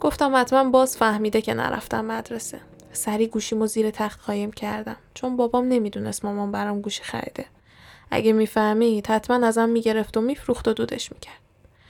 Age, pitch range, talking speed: 10-29, 215-240 Hz, 155 wpm